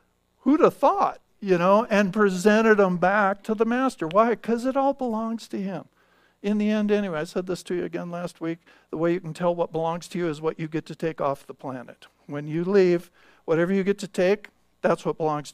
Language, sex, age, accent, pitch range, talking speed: English, male, 50-69, American, 155-195 Hz, 230 wpm